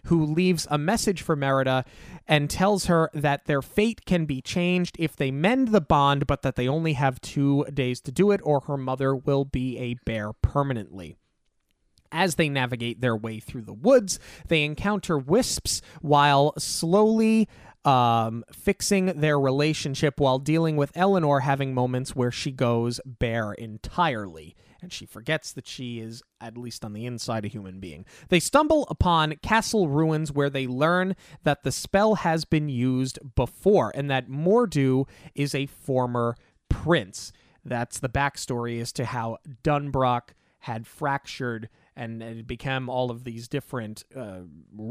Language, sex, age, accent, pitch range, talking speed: English, male, 30-49, American, 120-160 Hz, 160 wpm